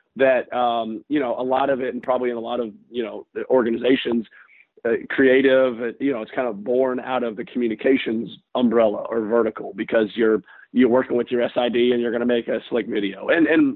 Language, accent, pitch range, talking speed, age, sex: English, American, 115-135 Hz, 215 wpm, 40-59, male